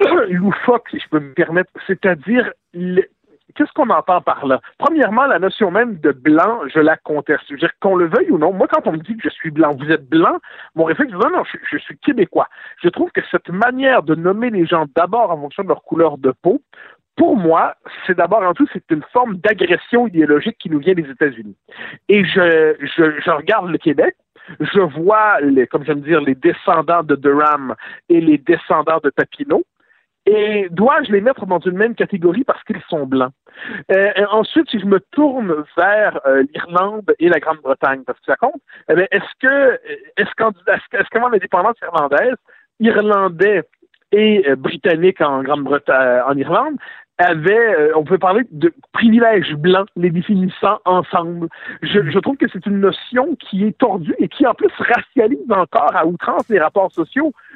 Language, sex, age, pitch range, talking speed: French, male, 50-69, 160-240 Hz, 190 wpm